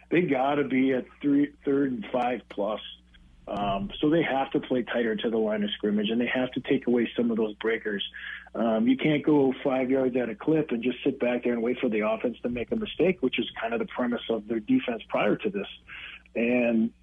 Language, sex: English, male